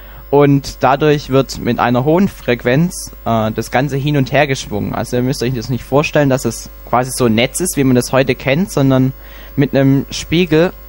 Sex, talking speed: male, 205 wpm